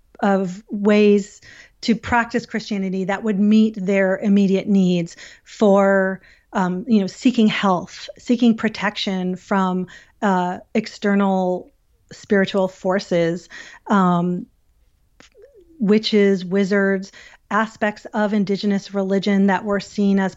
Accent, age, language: American, 40-59, English